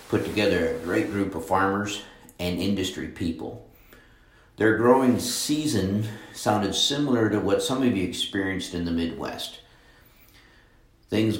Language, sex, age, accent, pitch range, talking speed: English, male, 50-69, American, 85-105 Hz, 130 wpm